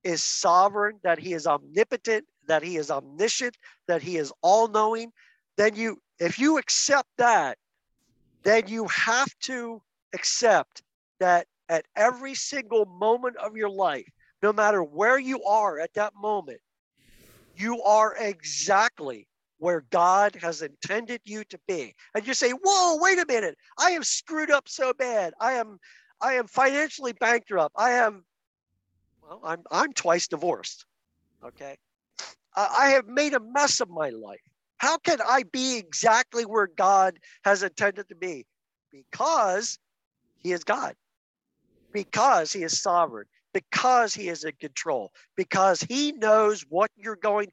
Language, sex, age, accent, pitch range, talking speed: English, male, 50-69, American, 180-255 Hz, 145 wpm